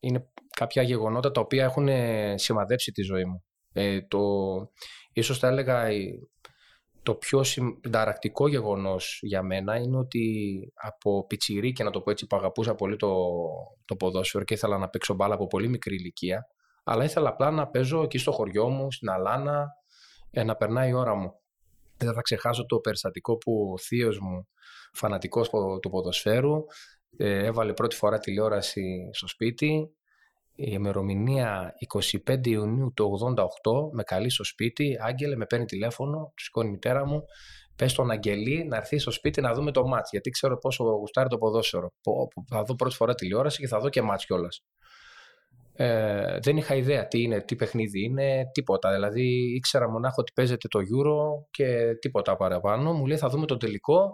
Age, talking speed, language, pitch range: 20-39, 170 wpm, Greek, 100-130 Hz